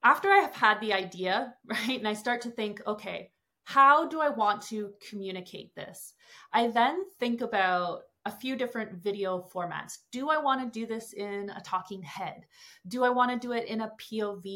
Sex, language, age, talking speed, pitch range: female, English, 30-49, 200 wpm, 190-235 Hz